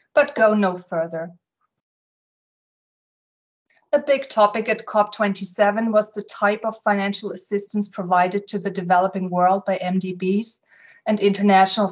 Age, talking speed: 30-49, 120 wpm